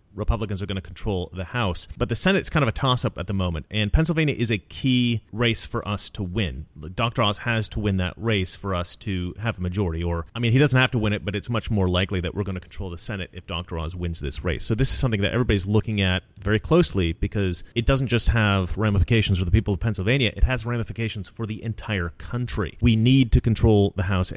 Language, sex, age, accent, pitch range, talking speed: English, male, 30-49, American, 90-115 Hz, 250 wpm